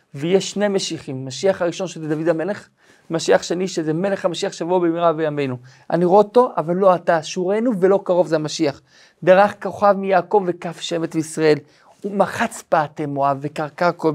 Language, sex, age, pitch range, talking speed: Hebrew, male, 40-59, 160-195 Hz, 165 wpm